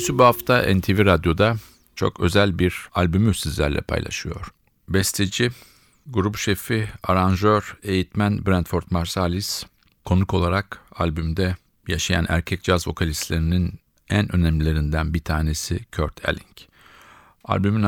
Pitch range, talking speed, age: 85-105 Hz, 105 wpm, 50-69